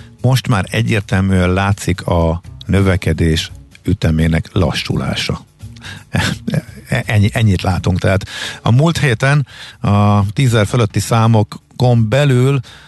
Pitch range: 90-115 Hz